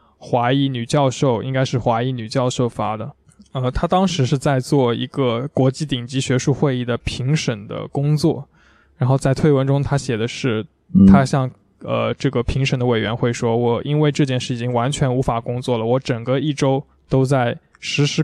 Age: 20-39